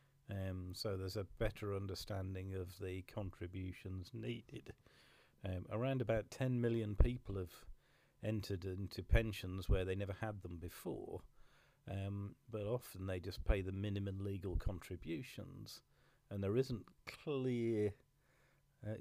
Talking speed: 125 wpm